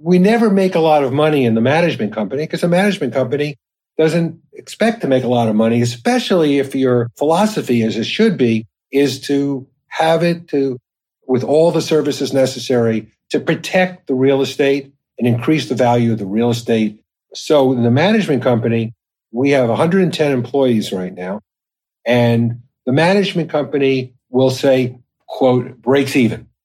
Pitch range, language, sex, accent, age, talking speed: 120-155 Hz, English, male, American, 50-69, 165 wpm